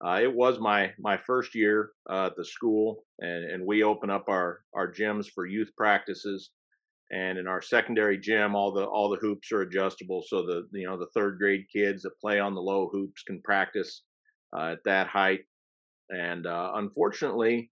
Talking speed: 195 wpm